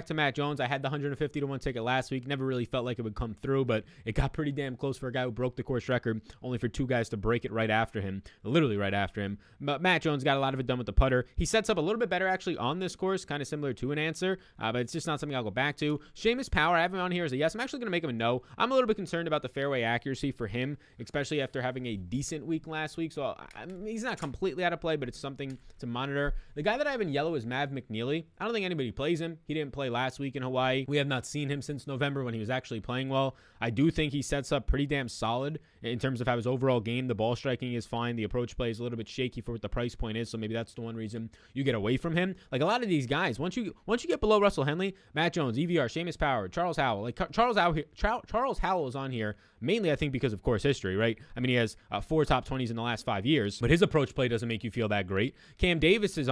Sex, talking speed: male, 300 wpm